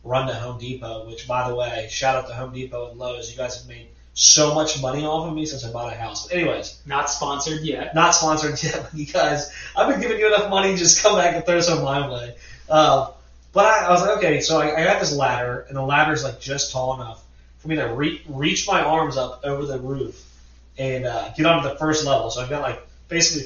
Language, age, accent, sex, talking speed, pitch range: English, 20-39, American, male, 255 wpm, 120-155 Hz